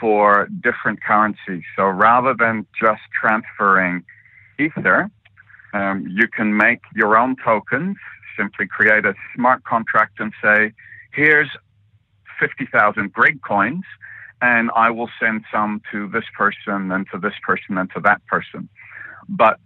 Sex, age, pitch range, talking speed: male, 50-69, 95-110 Hz, 135 wpm